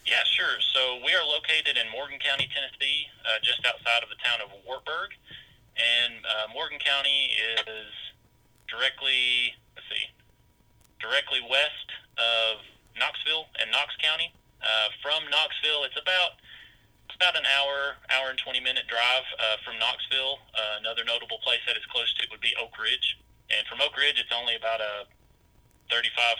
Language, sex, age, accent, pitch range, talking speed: English, male, 30-49, American, 110-135 Hz, 165 wpm